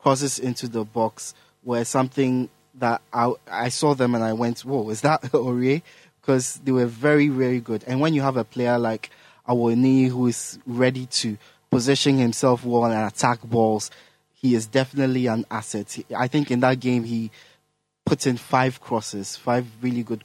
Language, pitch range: English, 115-130 Hz